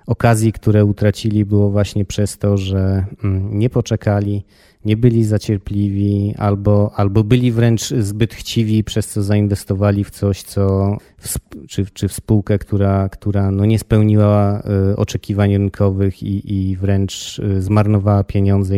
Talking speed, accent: 135 wpm, native